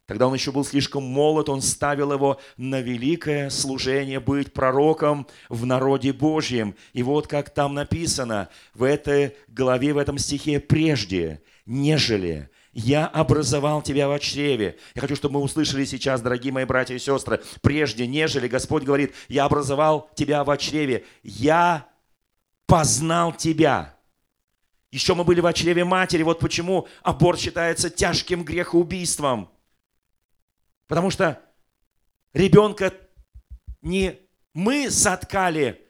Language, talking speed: Russian, 125 wpm